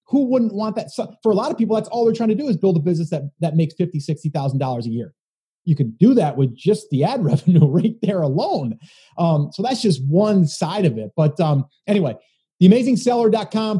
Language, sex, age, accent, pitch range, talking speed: English, male, 30-49, American, 150-200 Hz, 235 wpm